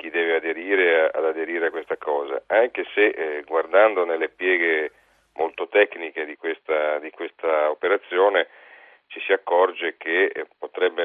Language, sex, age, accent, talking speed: Italian, male, 40-59, native, 135 wpm